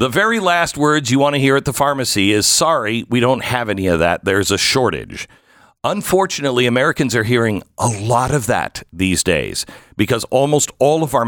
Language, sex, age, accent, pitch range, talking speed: English, male, 50-69, American, 100-140 Hz, 195 wpm